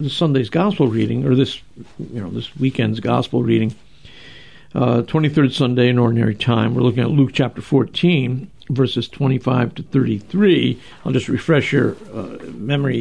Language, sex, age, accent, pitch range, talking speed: English, male, 60-79, American, 125-150 Hz, 170 wpm